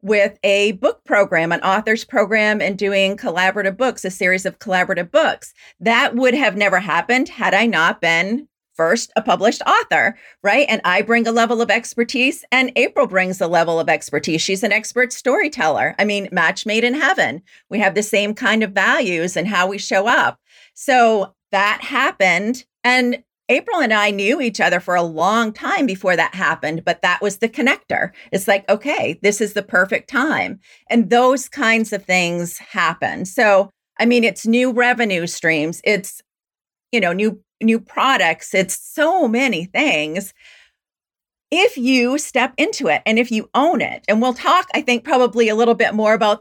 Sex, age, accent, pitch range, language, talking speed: female, 40-59, American, 190-245 Hz, English, 180 wpm